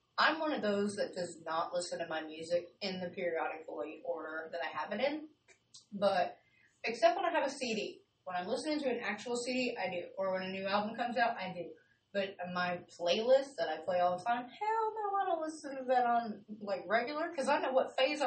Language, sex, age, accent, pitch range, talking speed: English, female, 20-39, American, 180-245 Hz, 230 wpm